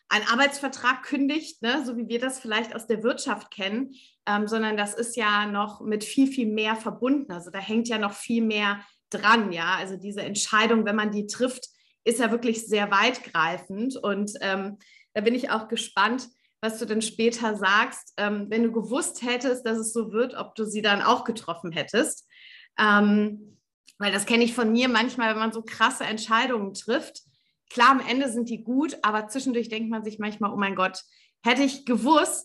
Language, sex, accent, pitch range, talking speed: German, female, German, 210-255 Hz, 195 wpm